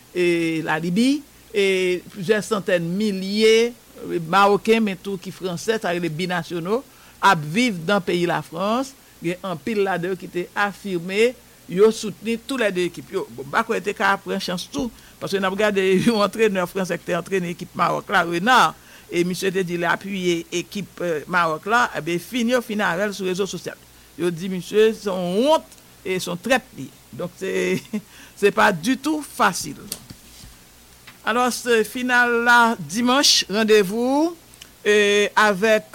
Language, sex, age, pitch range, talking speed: English, male, 60-79, 175-215 Hz, 140 wpm